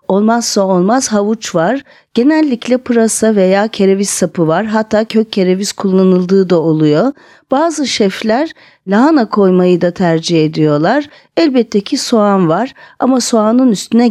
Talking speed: 130 wpm